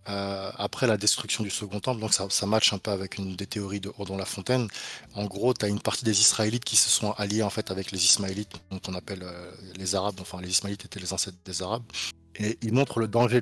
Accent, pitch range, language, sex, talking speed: French, 100-115 Hz, French, male, 255 wpm